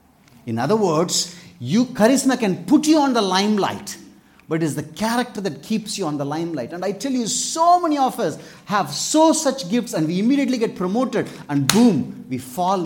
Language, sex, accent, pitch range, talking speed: English, male, Indian, 150-230 Hz, 200 wpm